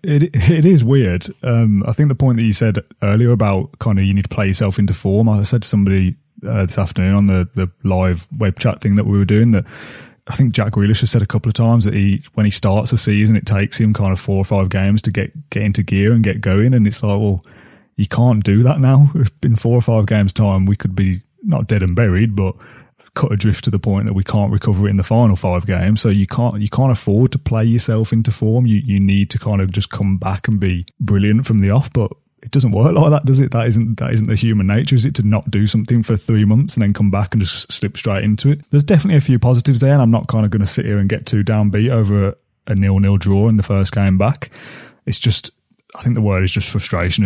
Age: 20-39